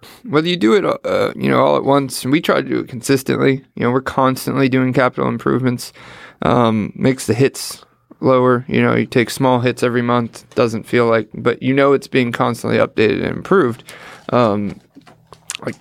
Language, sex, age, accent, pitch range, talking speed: English, male, 20-39, American, 115-130 Hz, 195 wpm